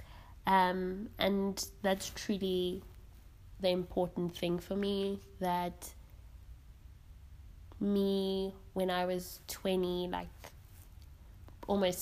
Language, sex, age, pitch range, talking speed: English, female, 20-39, 180-195 Hz, 85 wpm